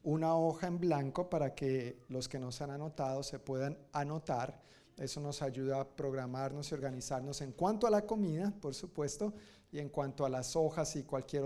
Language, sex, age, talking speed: Spanish, male, 40-59, 195 wpm